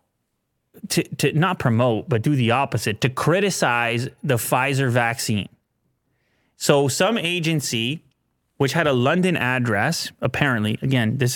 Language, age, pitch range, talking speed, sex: English, 30-49, 125-150 Hz, 125 wpm, male